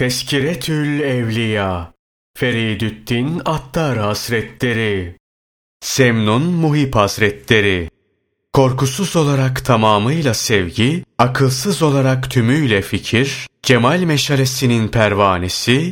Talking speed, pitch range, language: 70 wpm, 105-135 Hz, Turkish